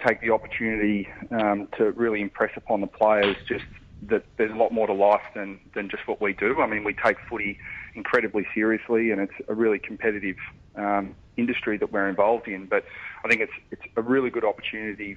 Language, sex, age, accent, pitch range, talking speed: English, male, 30-49, Australian, 100-115 Hz, 200 wpm